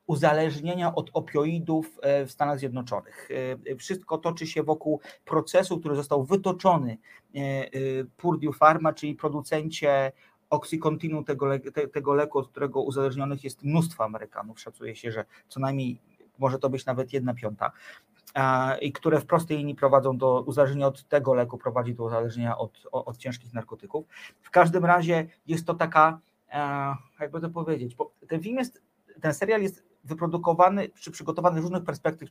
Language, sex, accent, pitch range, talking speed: Polish, male, native, 135-160 Hz, 150 wpm